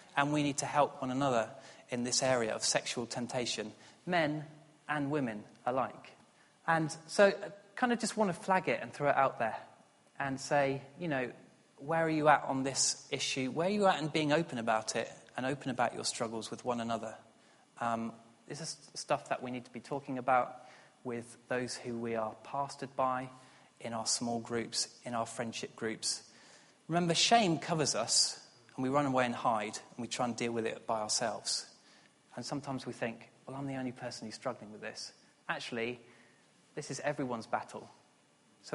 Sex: male